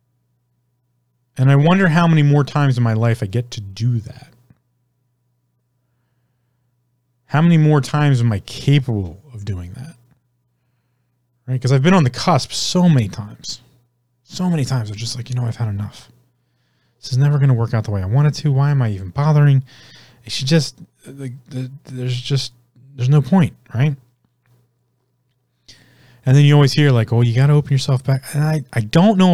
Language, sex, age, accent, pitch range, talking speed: English, male, 30-49, American, 120-140 Hz, 185 wpm